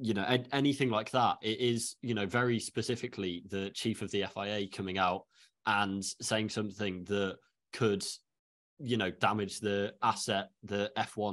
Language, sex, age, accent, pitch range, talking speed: English, male, 20-39, British, 105-120 Hz, 160 wpm